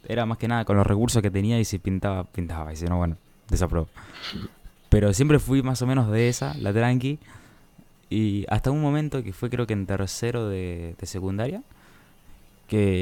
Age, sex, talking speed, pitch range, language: 20-39, male, 195 wpm, 95-115 Hz, Spanish